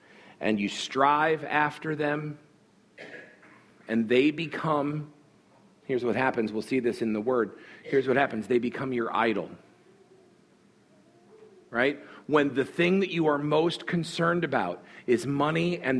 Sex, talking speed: male, 140 wpm